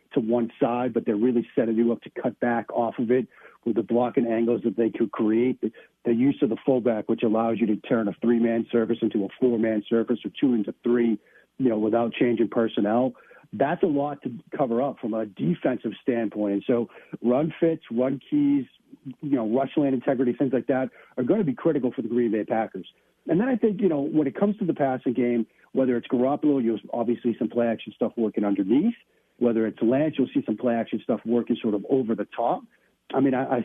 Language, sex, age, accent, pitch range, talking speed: English, male, 40-59, American, 115-135 Hz, 230 wpm